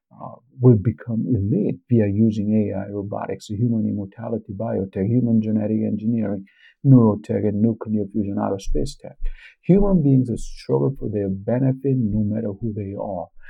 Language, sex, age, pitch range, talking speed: English, male, 50-69, 100-115 Hz, 145 wpm